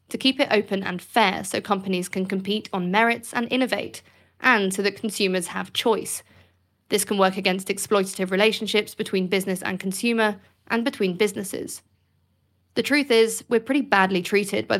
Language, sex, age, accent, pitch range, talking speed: English, female, 20-39, British, 190-225 Hz, 165 wpm